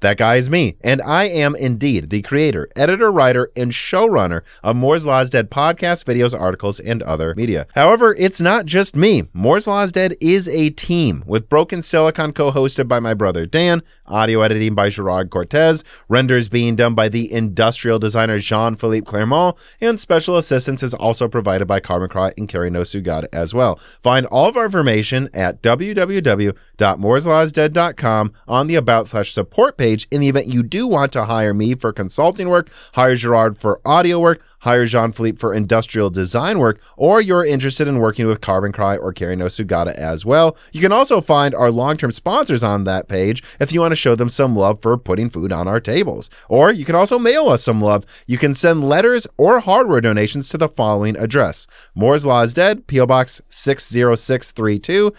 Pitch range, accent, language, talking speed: 105-155 Hz, American, English, 185 wpm